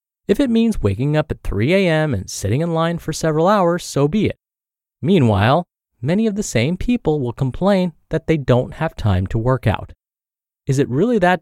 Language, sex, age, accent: English, male, 30-49, American